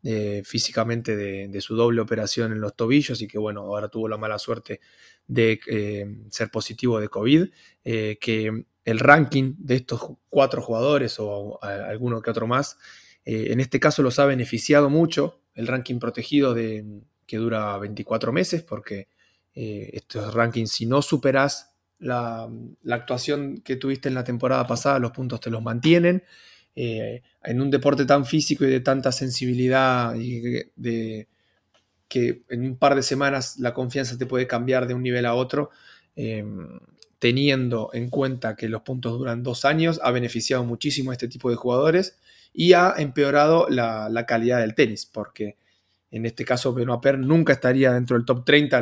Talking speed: 175 wpm